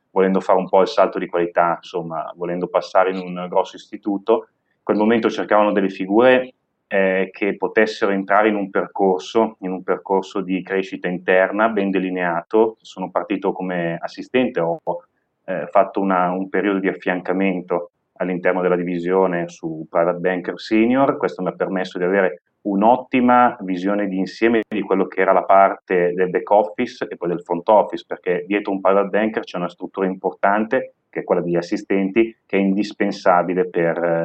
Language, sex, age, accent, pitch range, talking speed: Italian, male, 30-49, native, 90-100 Hz, 170 wpm